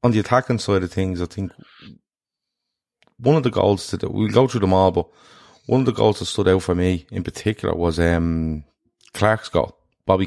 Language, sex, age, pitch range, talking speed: English, male, 30-49, 90-110 Hz, 210 wpm